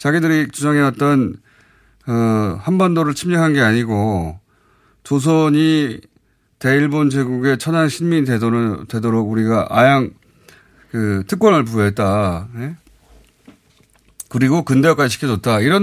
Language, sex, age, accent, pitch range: Korean, male, 30-49, native, 105-155 Hz